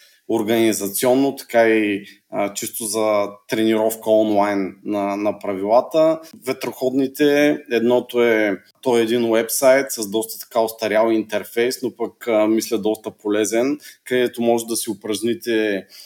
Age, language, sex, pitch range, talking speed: 30-49, Bulgarian, male, 110-135 Hz, 125 wpm